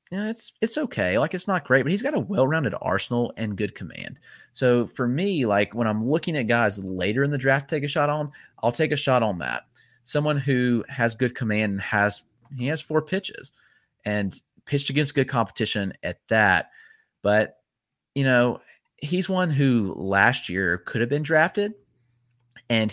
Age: 30-49